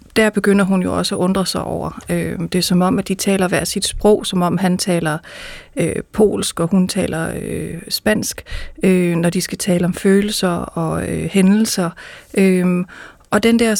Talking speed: 190 wpm